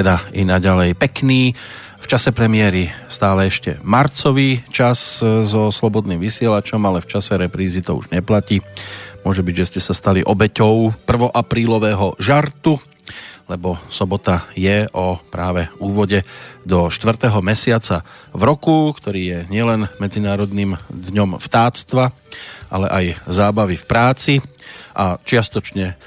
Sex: male